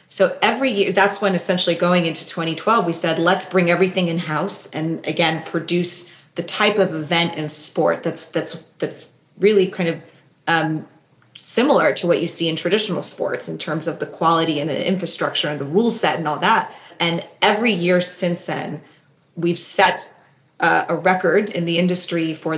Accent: American